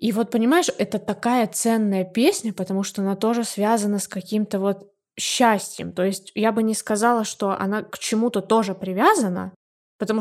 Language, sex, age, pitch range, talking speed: Russian, female, 20-39, 190-225 Hz, 170 wpm